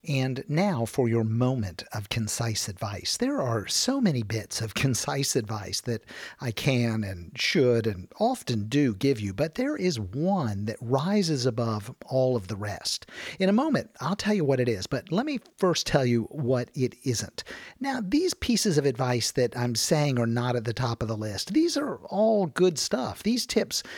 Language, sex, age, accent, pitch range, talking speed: English, male, 50-69, American, 120-195 Hz, 195 wpm